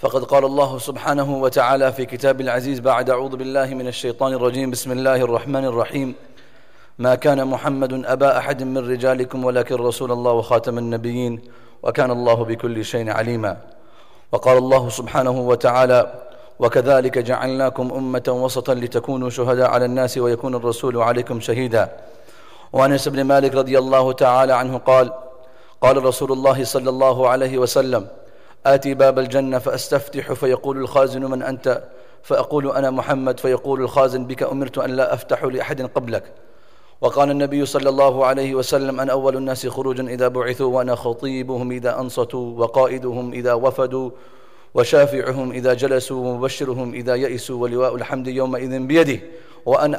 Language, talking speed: English, 140 wpm